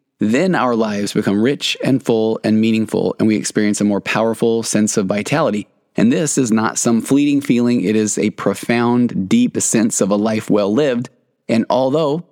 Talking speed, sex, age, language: 185 wpm, male, 20-39, English